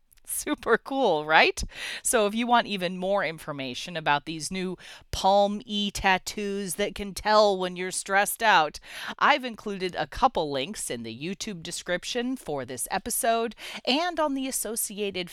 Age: 40-59